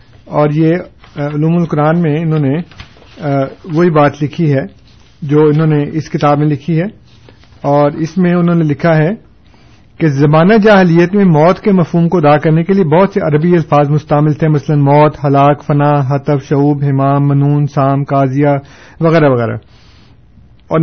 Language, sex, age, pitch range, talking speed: Urdu, male, 50-69, 140-170 Hz, 165 wpm